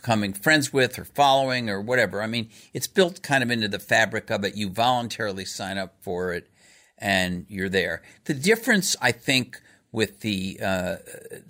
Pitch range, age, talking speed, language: 100-135 Hz, 50-69, 175 wpm, English